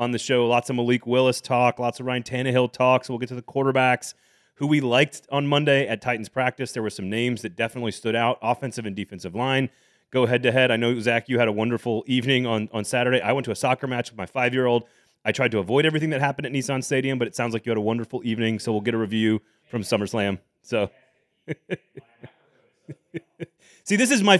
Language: English